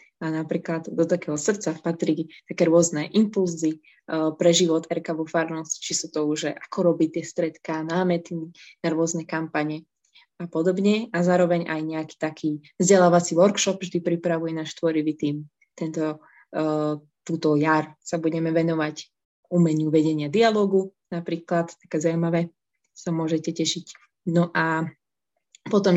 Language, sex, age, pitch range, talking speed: Slovak, female, 20-39, 160-180 Hz, 135 wpm